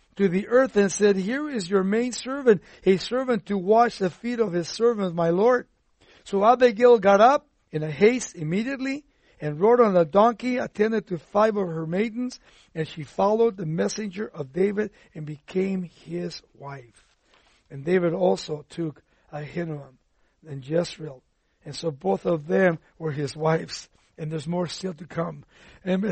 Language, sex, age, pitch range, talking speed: English, male, 60-79, 170-220 Hz, 170 wpm